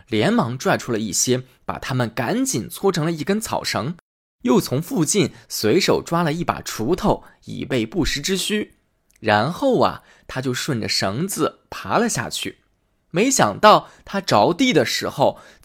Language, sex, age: Chinese, male, 20-39